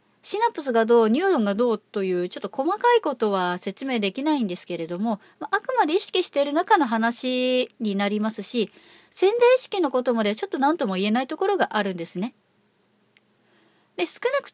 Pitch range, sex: 225-345 Hz, female